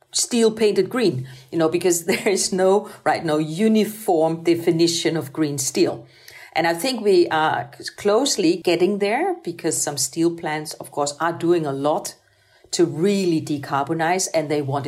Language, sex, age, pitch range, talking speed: English, female, 50-69, 155-200 Hz, 160 wpm